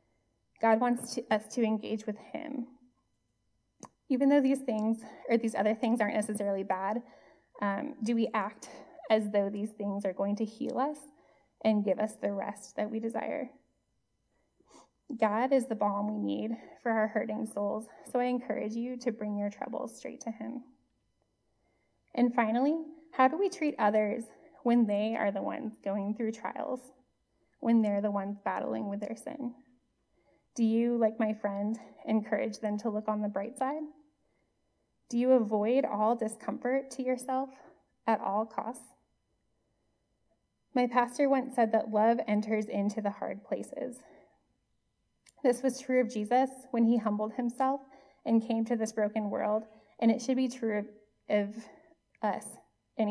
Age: 10-29